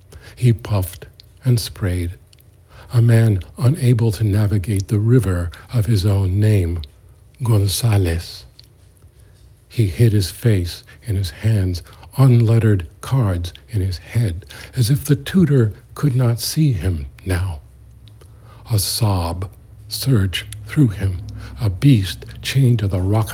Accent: American